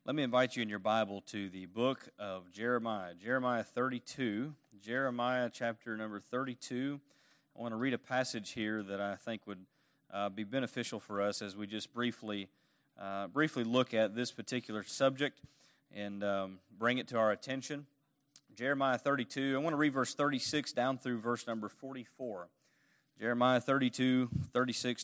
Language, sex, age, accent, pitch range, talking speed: English, male, 30-49, American, 110-135 Hz, 165 wpm